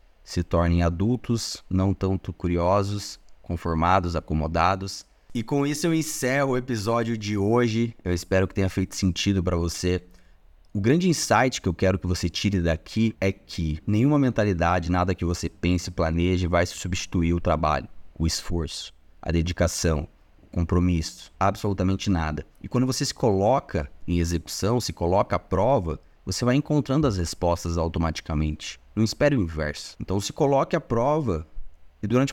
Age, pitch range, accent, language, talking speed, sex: 20-39, 85-120 Hz, Brazilian, Portuguese, 155 wpm, male